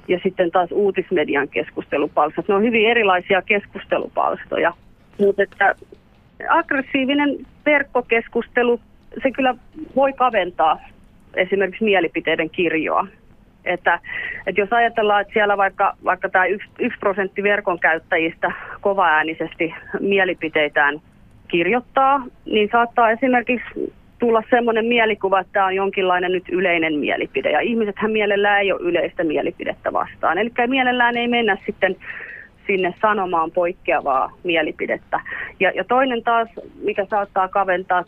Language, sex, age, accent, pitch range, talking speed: Finnish, female, 30-49, native, 185-235 Hz, 115 wpm